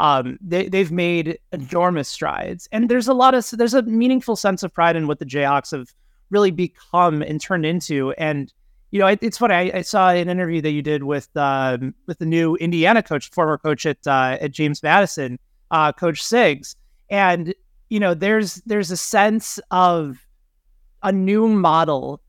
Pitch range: 150-195 Hz